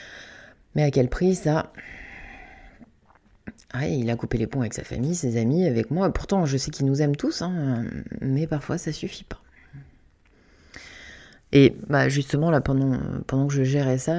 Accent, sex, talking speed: French, female, 175 wpm